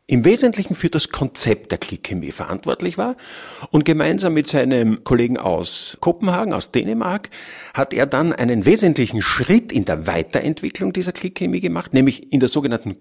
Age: 50-69